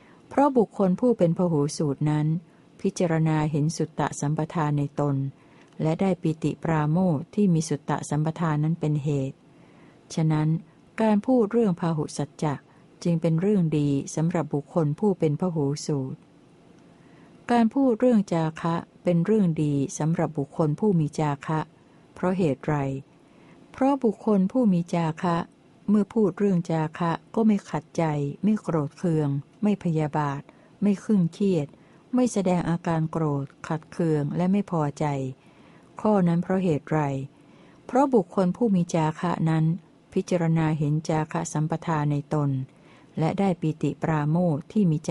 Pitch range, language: 150-185 Hz, Thai